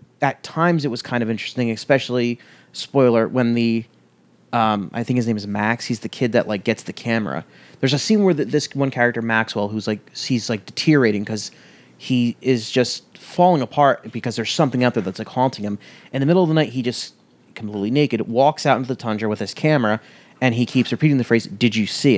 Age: 30-49